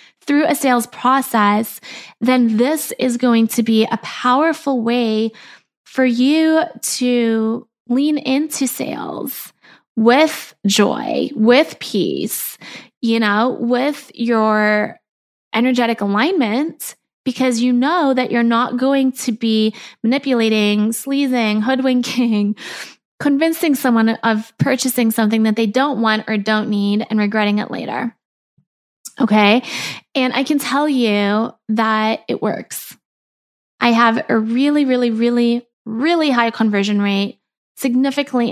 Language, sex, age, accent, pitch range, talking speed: English, female, 20-39, American, 220-255 Hz, 120 wpm